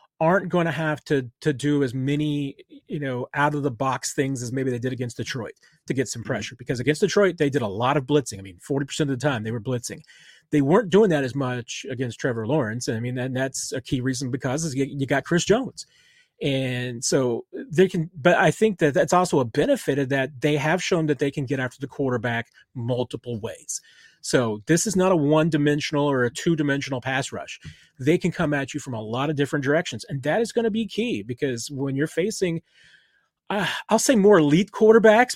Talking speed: 220 wpm